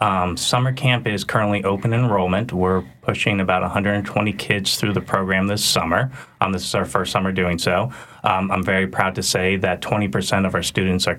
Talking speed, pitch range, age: 200 wpm, 90-100 Hz, 20-39